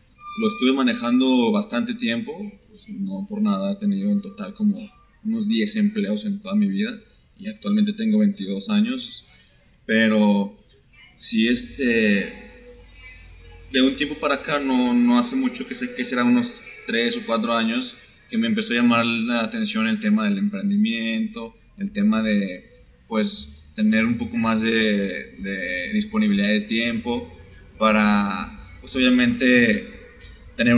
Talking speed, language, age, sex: 145 wpm, Spanish, 20-39, male